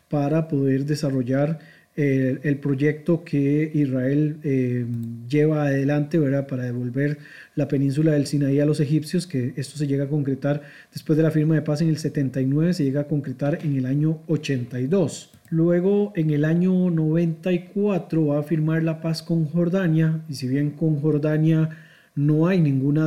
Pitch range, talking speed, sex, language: 145-160 Hz, 165 wpm, male, Spanish